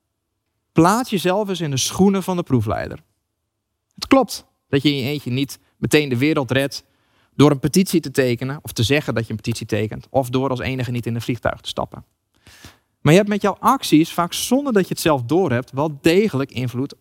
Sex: male